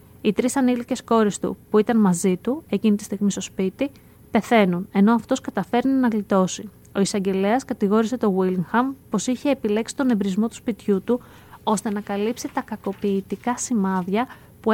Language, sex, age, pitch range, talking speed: Greek, female, 20-39, 195-245 Hz, 165 wpm